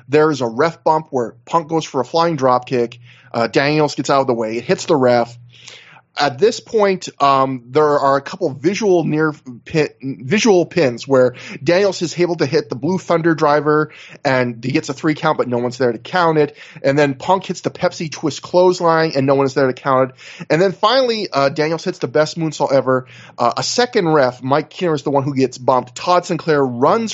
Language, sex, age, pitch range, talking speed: English, male, 20-39, 125-165 Hz, 220 wpm